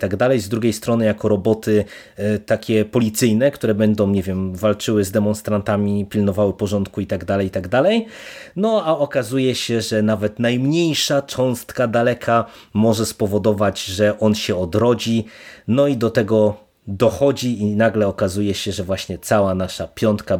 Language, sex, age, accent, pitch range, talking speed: Polish, male, 30-49, native, 100-115 Hz, 160 wpm